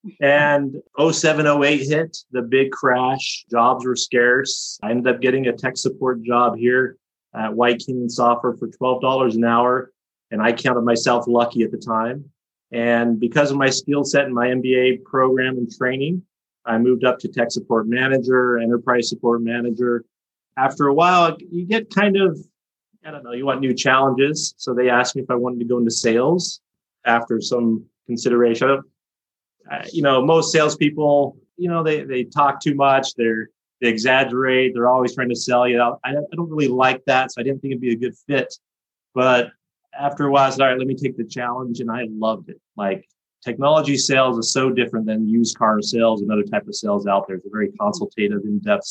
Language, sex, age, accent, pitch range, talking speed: English, male, 30-49, American, 120-140 Hz, 200 wpm